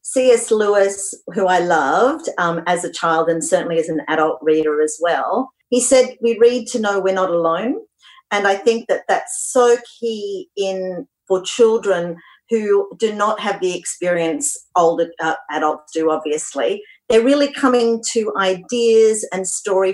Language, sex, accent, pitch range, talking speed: English, female, Australian, 180-235 Hz, 165 wpm